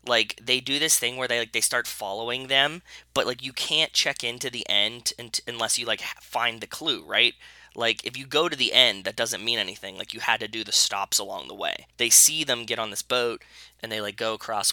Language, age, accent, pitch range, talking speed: English, 10-29, American, 115-155 Hz, 255 wpm